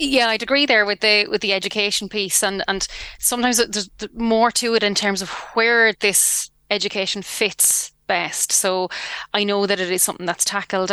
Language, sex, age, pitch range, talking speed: English, female, 20-39, 185-215 Hz, 185 wpm